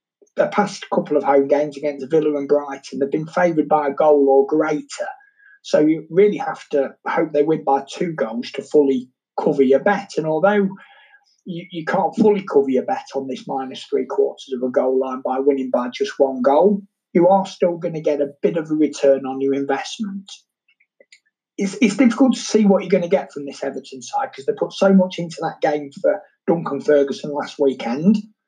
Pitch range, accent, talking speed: 140-205 Hz, British, 210 wpm